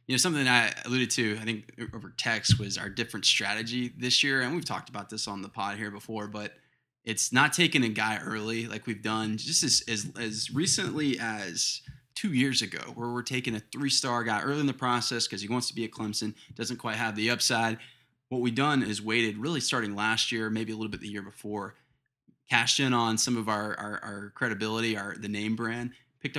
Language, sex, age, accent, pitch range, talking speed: English, male, 20-39, American, 105-125 Hz, 220 wpm